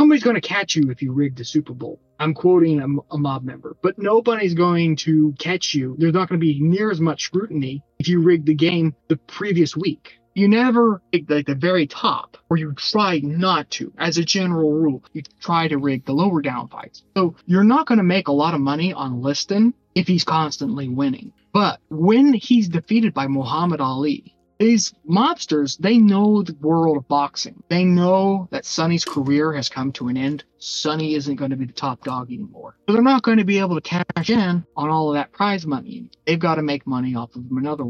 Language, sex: English, male